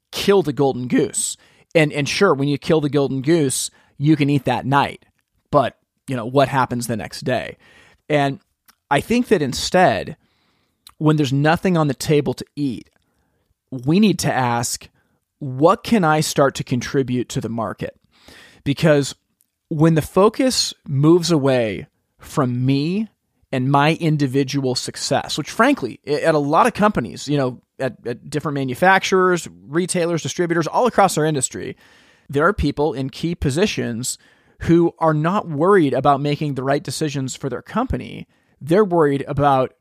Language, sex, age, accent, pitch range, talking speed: English, male, 30-49, American, 135-165 Hz, 155 wpm